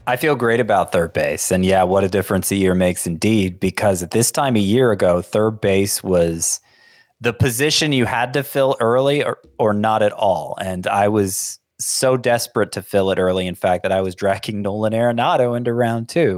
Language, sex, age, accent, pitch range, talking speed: English, male, 20-39, American, 95-115 Hz, 210 wpm